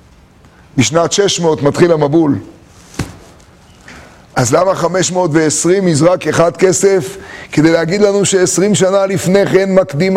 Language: Hebrew